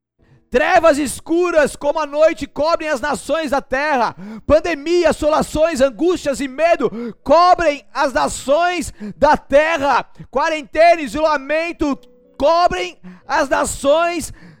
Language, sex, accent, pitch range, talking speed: Portuguese, male, Brazilian, 245-330 Hz, 105 wpm